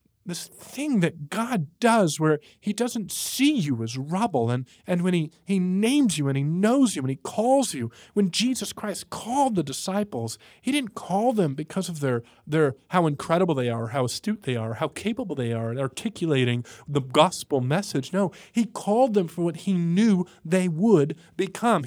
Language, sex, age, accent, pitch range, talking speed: English, male, 40-59, American, 125-190 Hz, 190 wpm